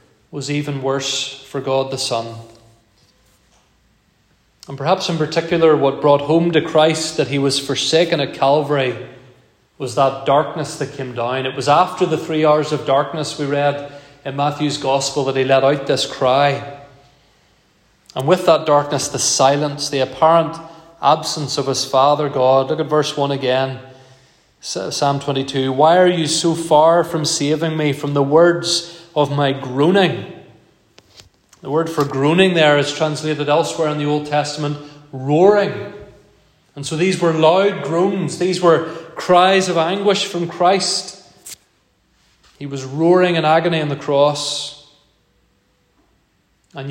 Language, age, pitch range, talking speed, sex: English, 30-49, 135-160 Hz, 150 wpm, male